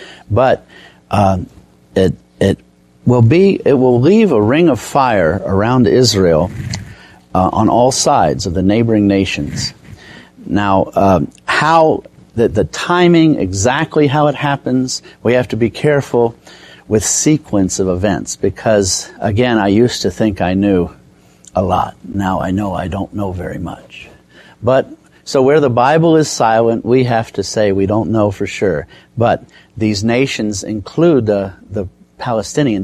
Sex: male